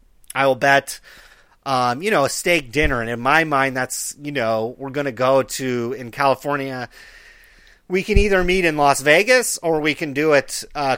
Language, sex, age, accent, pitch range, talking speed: English, male, 30-49, American, 125-175 Hz, 195 wpm